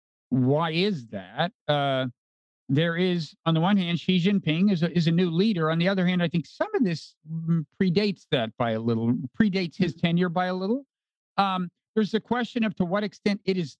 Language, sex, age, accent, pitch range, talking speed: English, male, 50-69, American, 140-195 Hz, 210 wpm